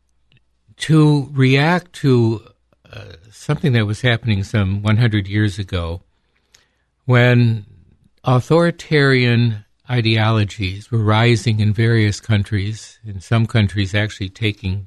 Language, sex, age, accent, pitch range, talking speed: English, male, 60-79, American, 100-125 Hz, 100 wpm